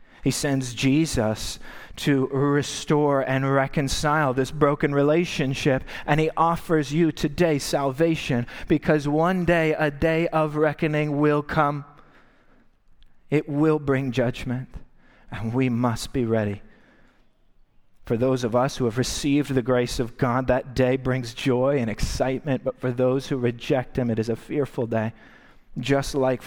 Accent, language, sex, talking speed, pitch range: American, English, male, 145 wpm, 125-150 Hz